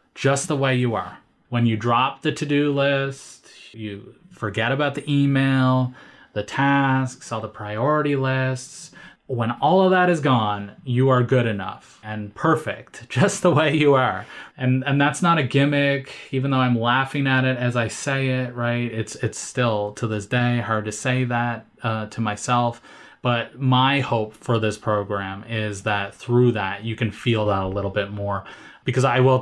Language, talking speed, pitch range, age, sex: English, 185 wpm, 110-135 Hz, 20-39, male